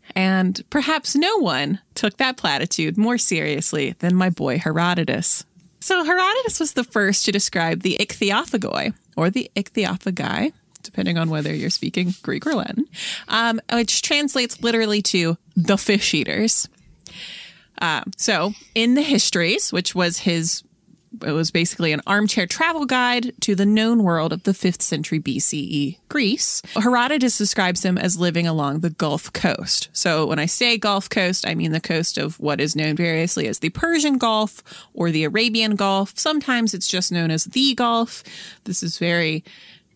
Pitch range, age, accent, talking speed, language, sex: 170-230 Hz, 30-49, American, 160 wpm, English, female